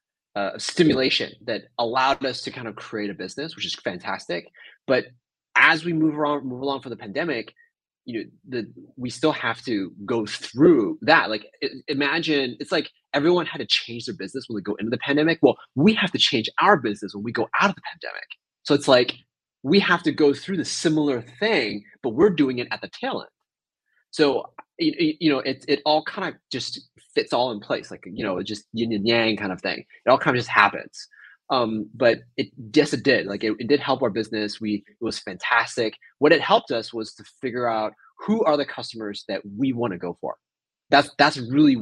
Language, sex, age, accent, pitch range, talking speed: English, male, 20-39, American, 105-145 Hz, 220 wpm